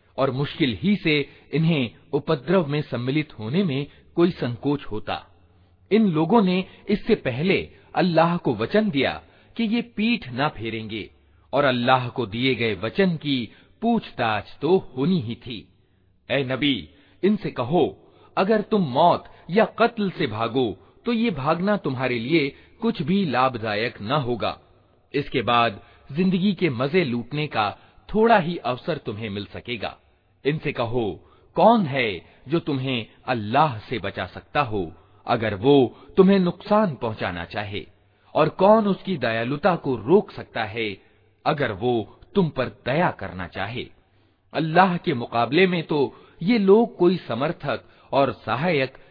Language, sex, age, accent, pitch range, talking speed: Hindi, male, 40-59, native, 115-185 Hz, 140 wpm